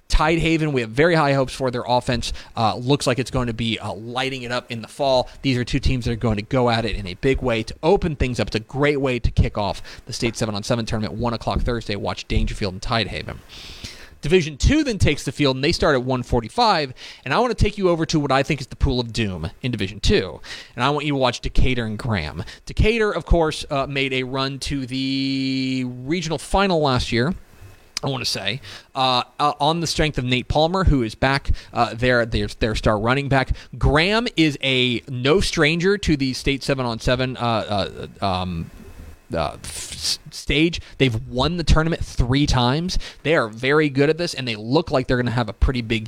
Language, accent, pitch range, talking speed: English, American, 115-150 Hz, 225 wpm